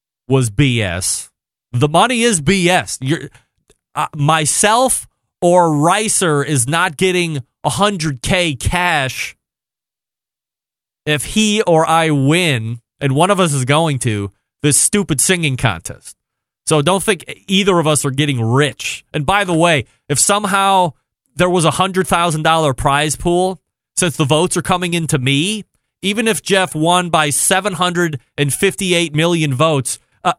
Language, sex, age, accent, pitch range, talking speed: English, male, 30-49, American, 145-200 Hz, 135 wpm